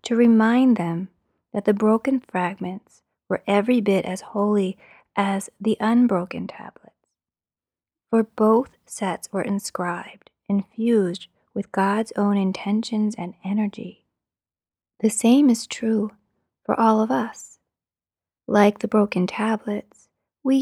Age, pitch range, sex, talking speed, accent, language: 30-49, 195-230 Hz, female, 120 wpm, American, English